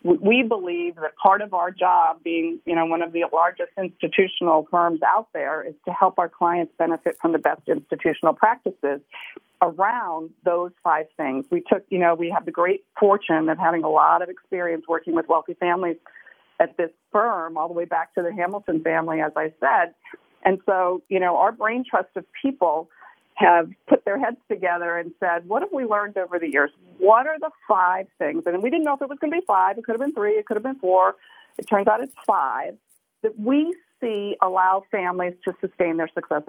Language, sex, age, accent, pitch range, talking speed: English, female, 40-59, American, 165-215 Hz, 210 wpm